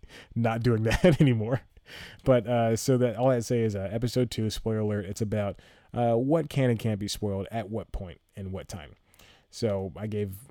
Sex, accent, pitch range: male, American, 100-125 Hz